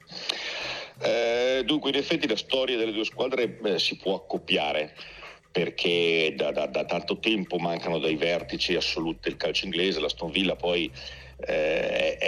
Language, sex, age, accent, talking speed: Italian, male, 50-69, native, 145 wpm